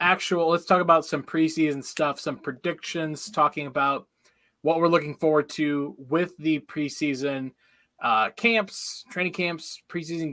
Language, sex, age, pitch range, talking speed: English, male, 20-39, 140-180 Hz, 140 wpm